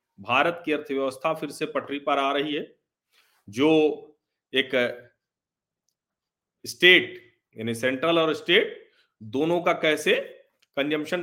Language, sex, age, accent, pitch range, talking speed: Hindi, male, 40-59, native, 130-205 Hz, 110 wpm